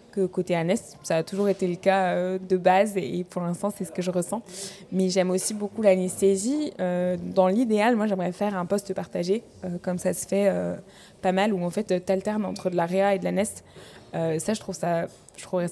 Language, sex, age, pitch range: French, female, 20-39, 185-215 Hz